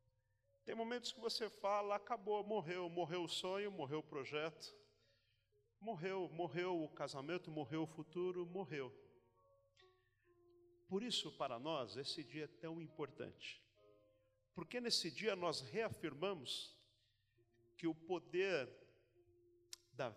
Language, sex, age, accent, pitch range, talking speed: Portuguese, male, 40-59, Brazilian, 125-185 Hz, 115 wpm